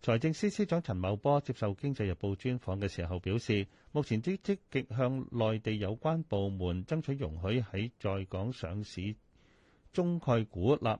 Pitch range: 100-135 Hz